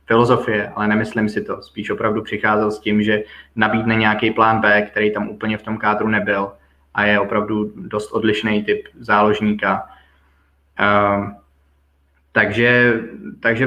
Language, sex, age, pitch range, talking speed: Czech, male, 20-39, 105-115 Hz, 140 wpm